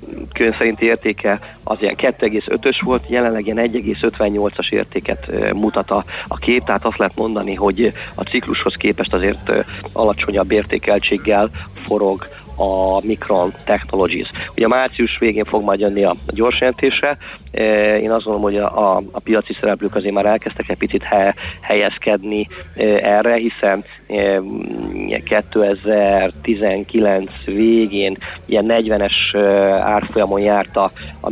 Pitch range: 100-115 Hz